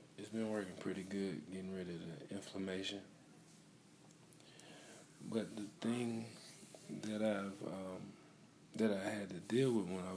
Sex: male